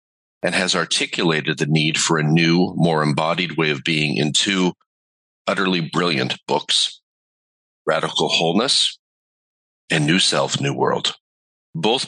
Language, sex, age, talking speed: English, male, 40-59, 130 wpm